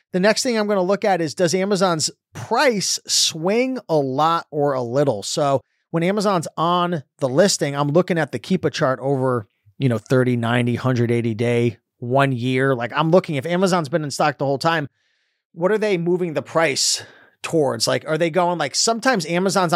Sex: male